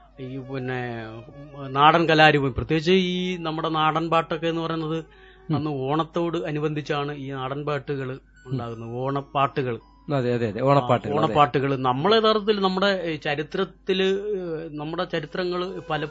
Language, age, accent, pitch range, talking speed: English, 30-49, Indian, 140-185 Hz, 80 wpm